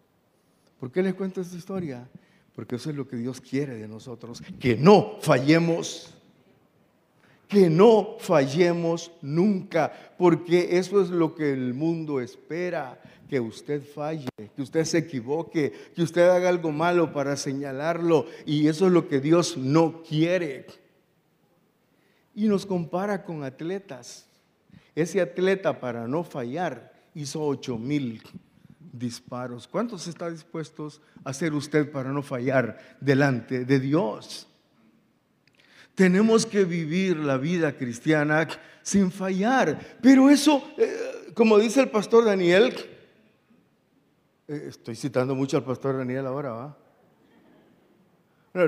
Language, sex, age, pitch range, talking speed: Spanish, male, 50-69, 135-180 Hz, 130 wpm